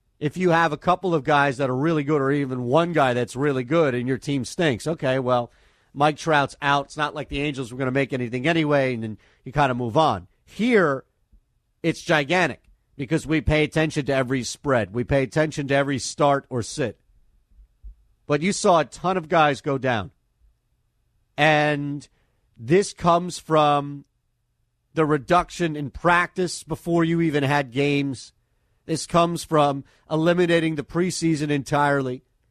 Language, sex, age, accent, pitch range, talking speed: English, male, 40-59, American, 130-170 Hz, 170 wpm